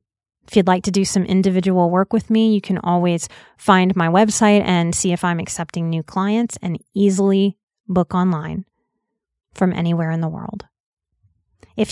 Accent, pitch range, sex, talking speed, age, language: American, 185-215 Hz, female, 165 wpm, 30-49, English